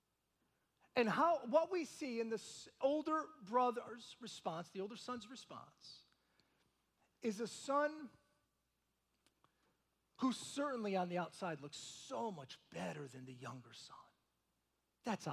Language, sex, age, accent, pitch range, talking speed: English, male, 40-59, American, 180-275 Hz, 120 wpm